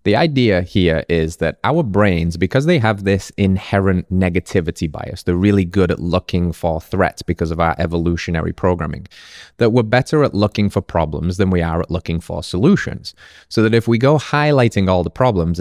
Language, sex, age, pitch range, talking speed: English, male, 20-39, 85-105 Hz, 190 wpm